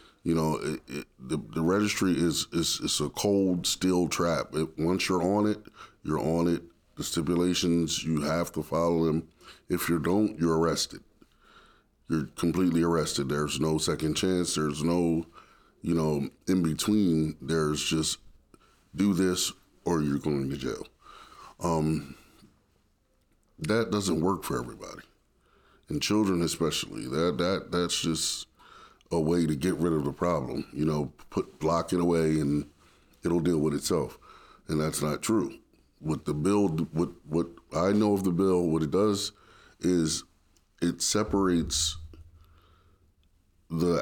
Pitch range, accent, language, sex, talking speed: 80-90 Hz, American, English, male, 145 wpm